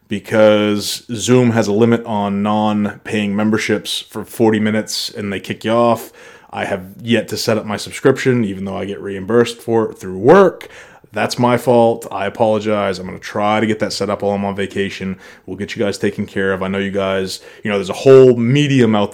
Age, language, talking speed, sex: 20-39, English, 215 wpm, male